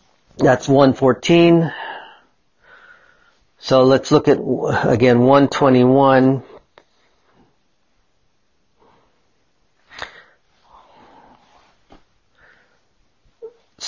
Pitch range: 110-140 Hz